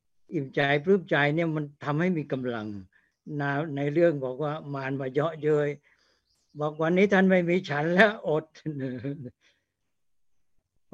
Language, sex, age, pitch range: Thai, male, 60-79, 135-170 Hz